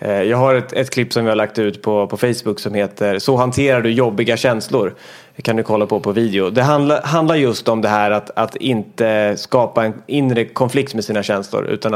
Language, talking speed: English, 220 wpm